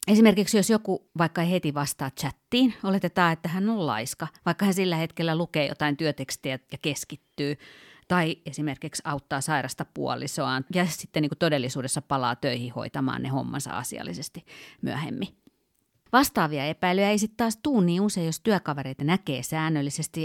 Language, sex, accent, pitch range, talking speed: Finnish, female, native, 140-180 Hz, 150 wpm